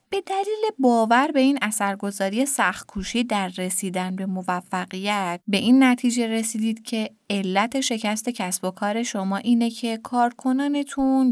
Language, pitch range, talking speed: Persian, 200-255 Hz, 135 wpm